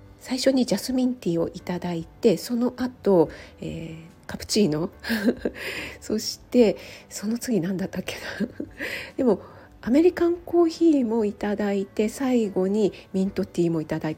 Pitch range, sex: 170-235 Hz, female